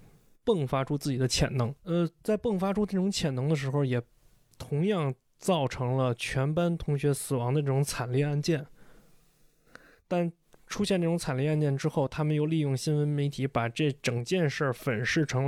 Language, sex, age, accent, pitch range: Chinese, male, 20-39, native, 130-160 Hz